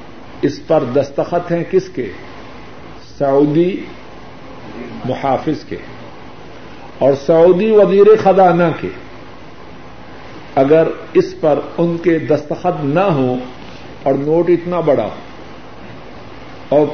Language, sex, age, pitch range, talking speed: Urdu, male, 50-69, 140-190 Hz, 100 wpm